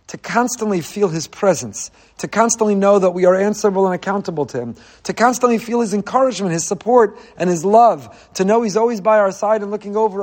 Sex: male